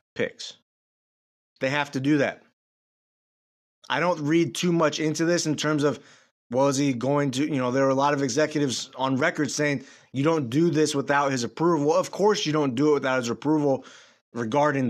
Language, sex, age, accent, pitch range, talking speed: English, male, 30-49, American, 130-155 Hz, 195 wpm